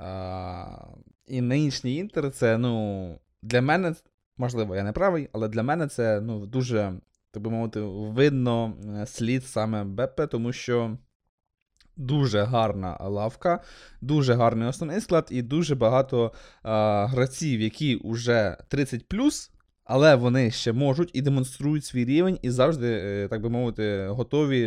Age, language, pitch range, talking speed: 20-39, Ukrainian, 105-130 Hz, 135 wpm